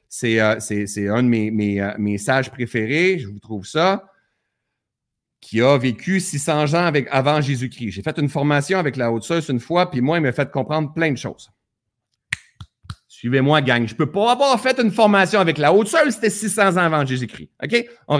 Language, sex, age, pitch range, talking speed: French, male, 30-49, 130-180 Hz, 200 wpm